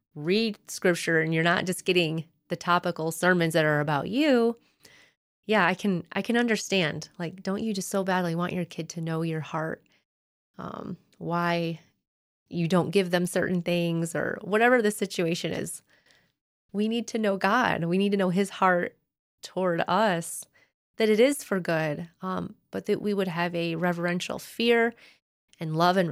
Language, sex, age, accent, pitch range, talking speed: English, female, 30-49, American, 160-195 Hz, 175 wpm